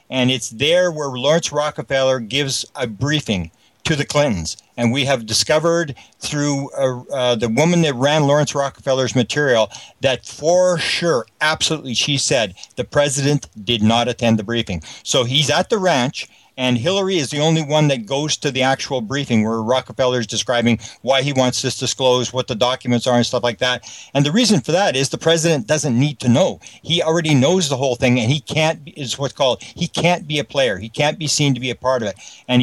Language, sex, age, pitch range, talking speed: English, male, 50-69, 125-155 Hz, 210 wpm